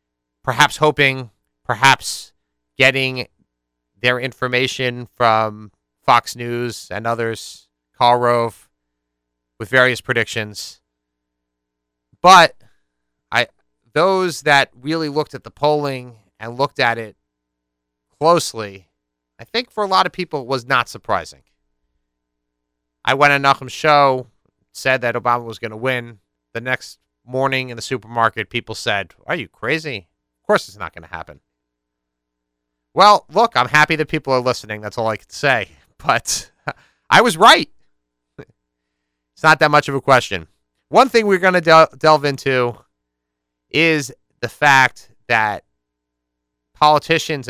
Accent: American